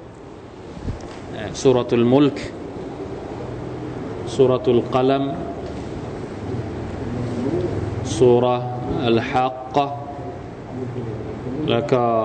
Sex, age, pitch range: male, 20-39, 115-150 Hz